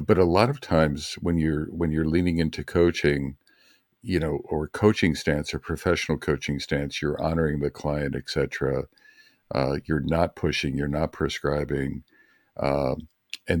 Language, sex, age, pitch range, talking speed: English, male, 50-69, 75-95 Hz, 160 wpm